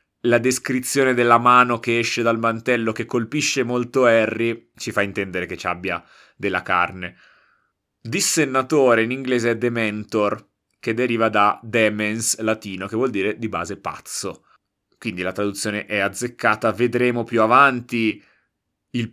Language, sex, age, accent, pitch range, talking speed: Italian, male, 30-49, native, 105-125 Hz, 140 wpm